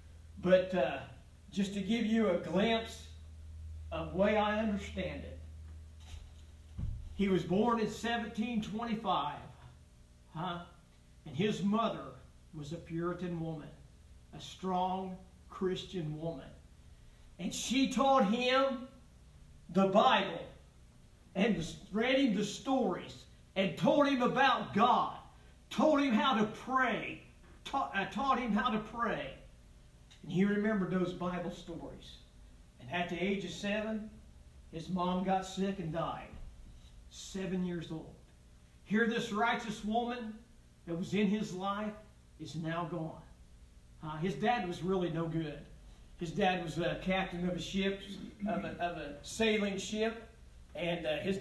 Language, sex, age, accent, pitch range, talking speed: English, male, 50-69, American, 150-215 Hz, 135 wpm